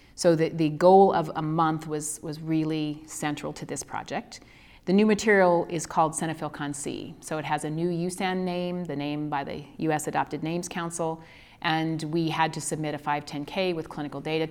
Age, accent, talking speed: 30-49, American, 195 wpm